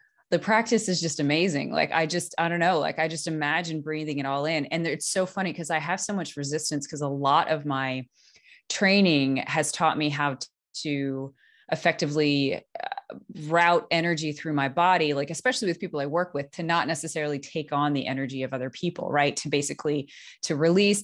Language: English